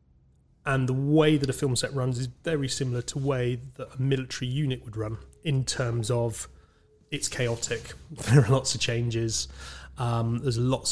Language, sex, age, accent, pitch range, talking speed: English, male, 30-49, British, 110-130 Hz, 180 wpm